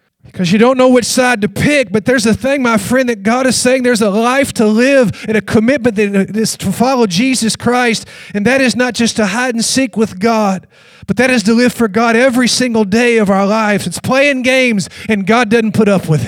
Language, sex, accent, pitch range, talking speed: English, male, American, 165-235 Hz, 230 wpm